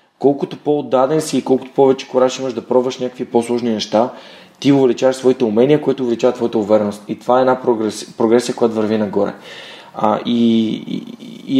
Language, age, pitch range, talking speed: Bulgarian, 30-49, 115-135 Hz, 175 wpm